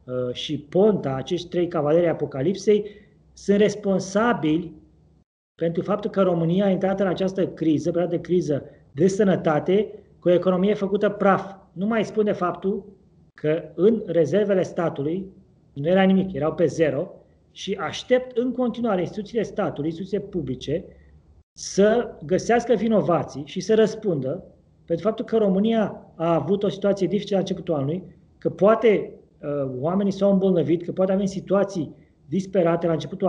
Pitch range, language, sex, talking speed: 165-205 Hz, Romanian, male, 140 wpm